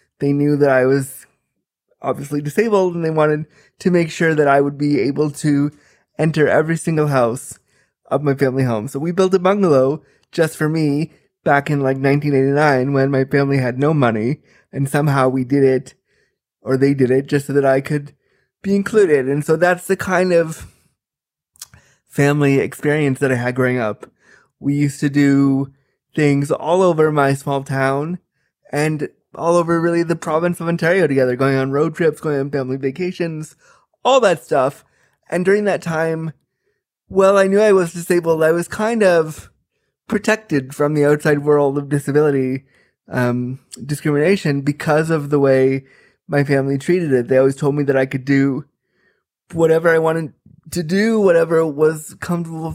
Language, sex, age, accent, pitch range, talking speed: English, male, 20-39, American, 140-170 Hz, 170 wpm